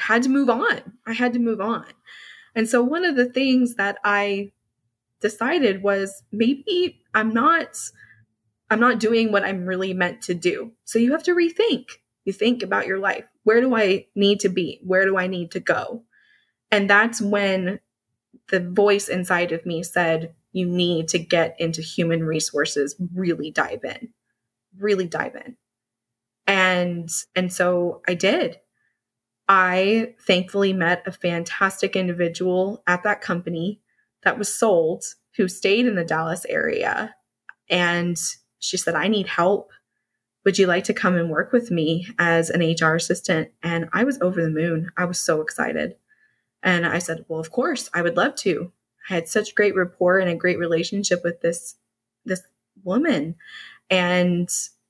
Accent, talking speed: American, 165 wpm